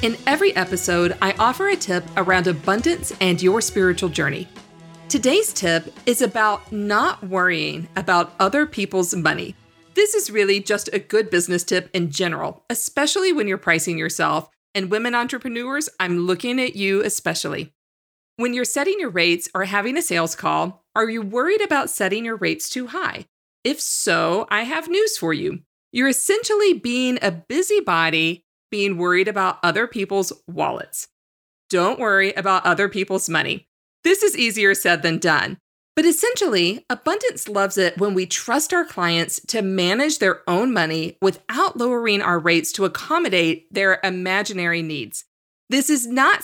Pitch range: 180-255 Hz